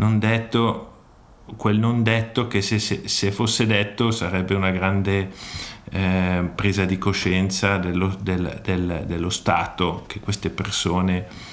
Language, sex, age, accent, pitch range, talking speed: Italian, male, 50-69, native, 95-110 Hz, 120 wpm